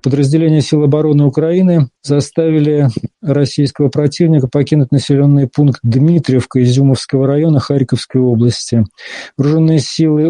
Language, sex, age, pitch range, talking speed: Russian, male, 40-59, 130-150 Hz, 100 wpm